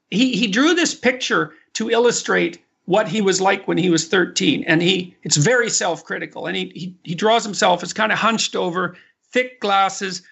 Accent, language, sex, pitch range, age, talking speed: American, English, male, 185-235 Hz, 50-69, 190 wpm